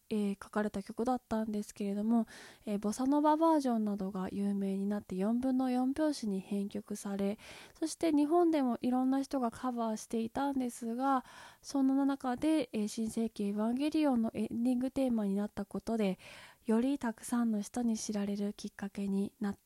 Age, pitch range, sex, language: 20-39, 210-260 Hz, female, Japanese